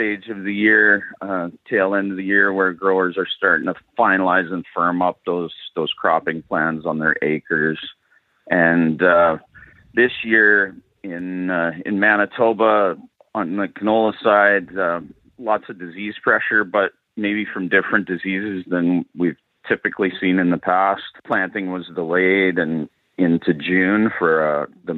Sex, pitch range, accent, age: male, 85-95 Hz, American, 40-59